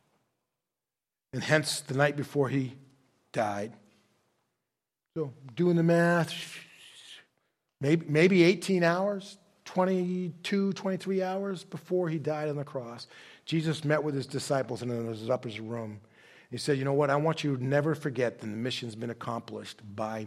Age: 40-59